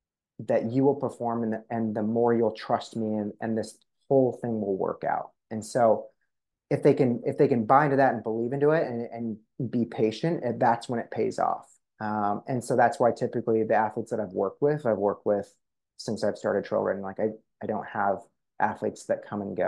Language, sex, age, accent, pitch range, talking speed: English, male, 30-49, American, 105-120 Hz, 225 wpm